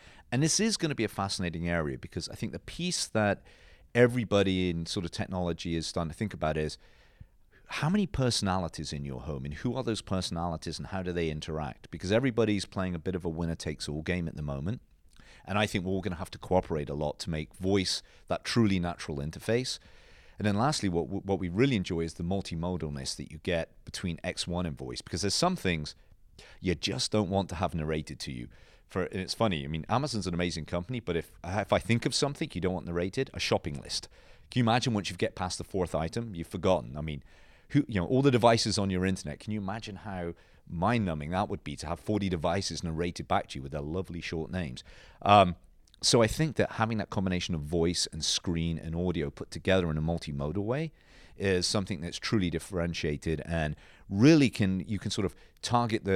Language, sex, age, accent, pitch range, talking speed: English, male, 40-59, British, 80-105 Hz, 220 wpm